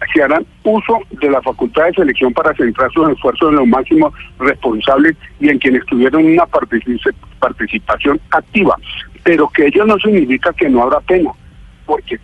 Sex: male